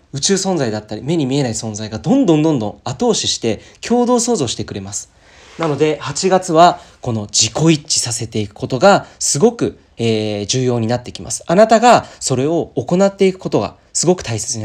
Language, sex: Japanese, male